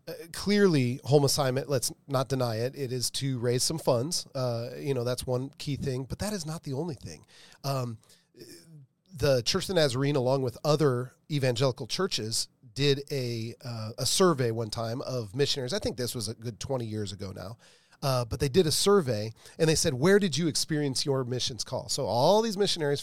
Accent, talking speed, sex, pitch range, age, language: American, 200 wpm, male, 120-160 Hz, 40-59, English